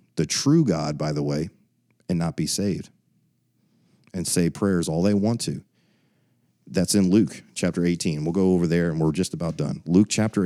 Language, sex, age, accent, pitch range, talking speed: English, male, 40-59, American, 85-110 Hz, 190 wpm